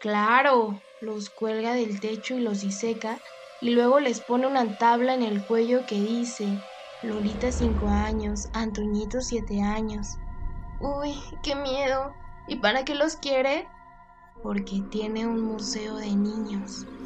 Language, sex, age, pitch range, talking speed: Spanish, female, 10-29, 215-255 Hz, 135 wpm